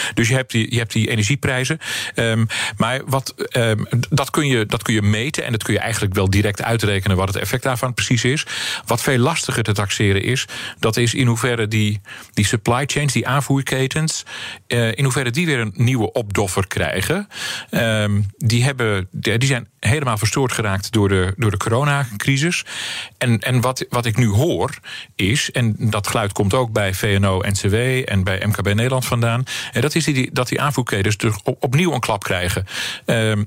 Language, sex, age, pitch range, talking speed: Dutch, male, 40-59, 105-130 Hz, 165 wpm